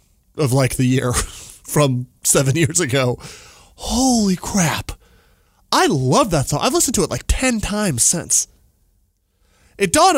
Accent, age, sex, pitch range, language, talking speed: American, 20-39, male, 120-185 Hz, English, 140 wpm